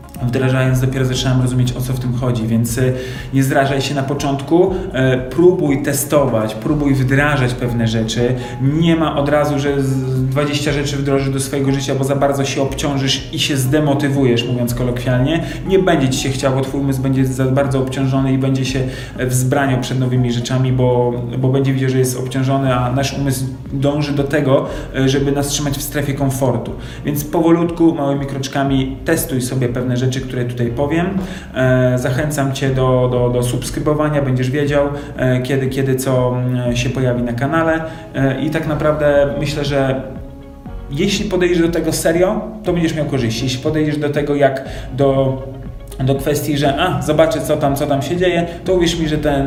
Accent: native